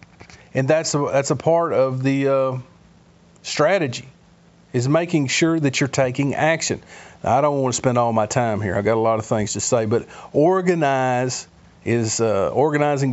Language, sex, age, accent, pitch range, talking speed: English, male, 40-59, American, 120-155 Hz, 185 wpm